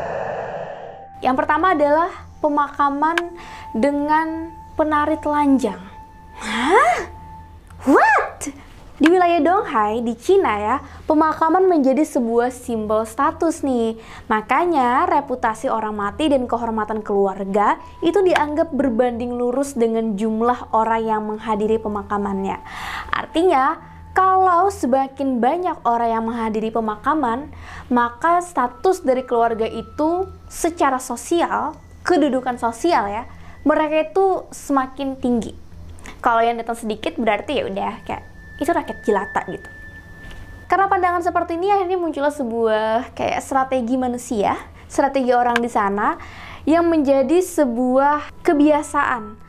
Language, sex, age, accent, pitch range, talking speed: Indonesian, female, 20-39, native, 225-315 Hz, 110 wpm